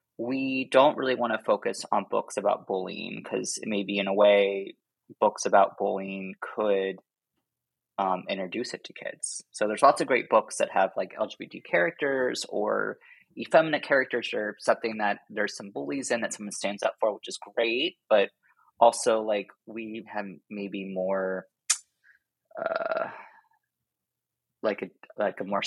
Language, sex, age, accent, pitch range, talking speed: English, male, 20-39, American, 95-130 Hz, 155 wpm